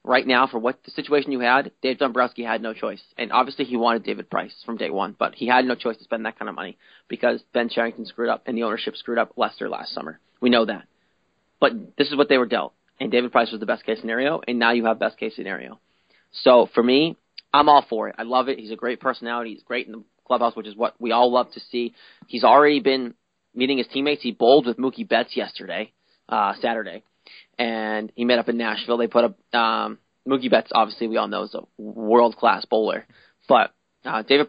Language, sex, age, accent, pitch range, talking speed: English, male, 30-49, American, 115-130 Hz, 235 wpm